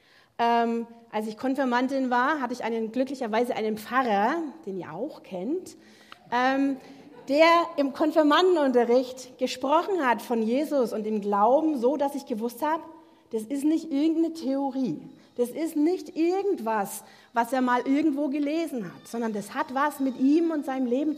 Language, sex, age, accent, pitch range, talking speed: German, female, 40-59, German, 225-290 Hz, 155 wpm